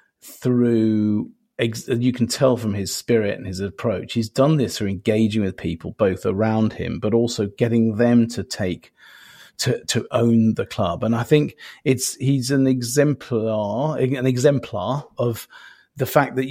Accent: British